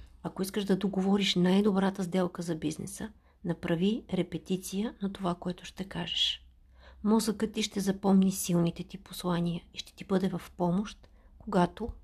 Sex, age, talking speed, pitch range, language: female, 50-69, 145 wpm, 160-195 Hz, Bulgarian